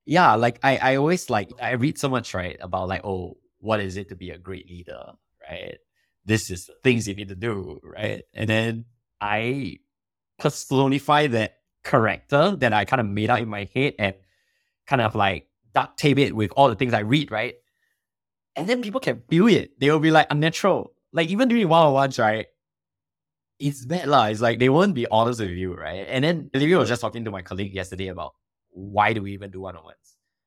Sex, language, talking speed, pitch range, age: male, English, 210 wpm, 95-135 Hz, 20-39